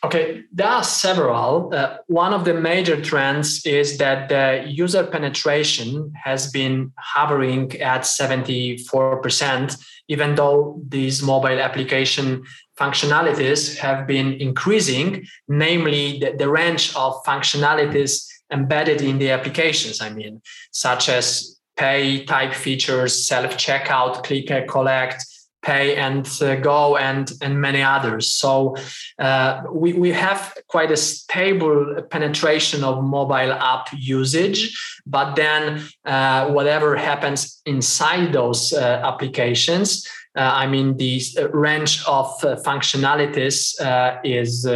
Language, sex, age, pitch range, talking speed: English, male, 20-39, 130-150 Hz, 120 wpm